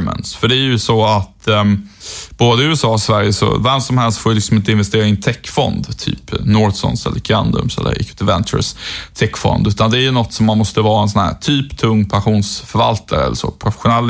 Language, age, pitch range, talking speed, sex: Swedish, 20-39, 110-130 Hz, 210 wpm, male